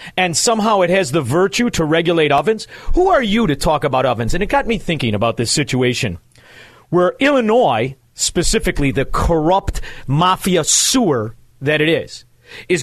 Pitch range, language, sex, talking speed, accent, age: 135-220 Hz, English, male, 165 wpm, American, 40-59